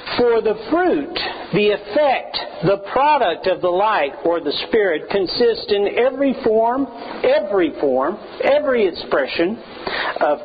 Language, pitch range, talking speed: English, 185-255 Hz, 125 wpm